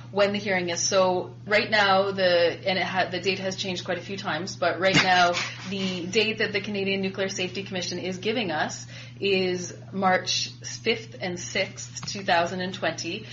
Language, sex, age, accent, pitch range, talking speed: English, female, 30-49, Canadian, 160-195 Hz, 175 wpm